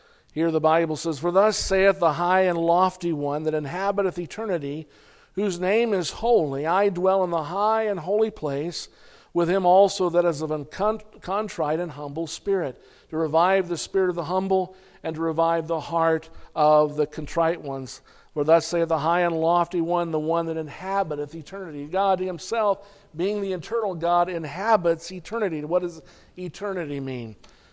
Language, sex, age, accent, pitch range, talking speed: English, male, 50-69, American, 155-195 Hz, 170 wpm